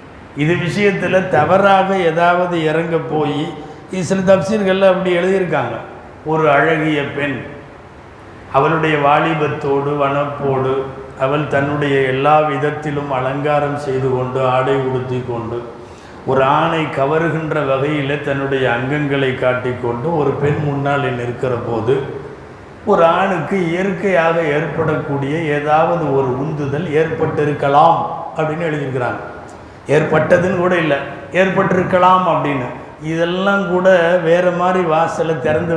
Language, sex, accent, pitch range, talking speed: Tamil, male, native, 140-180 Hz, 95 wpm